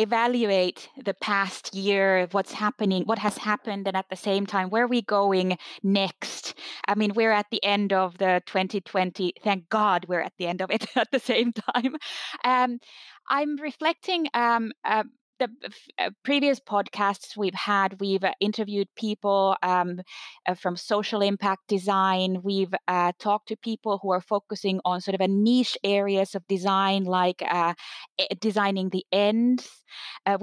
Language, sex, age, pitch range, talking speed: Finnish, female, 20-39, 195-235 Hz, 160 wpm